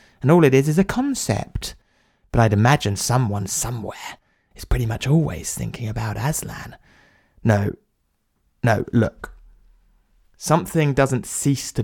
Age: 20-39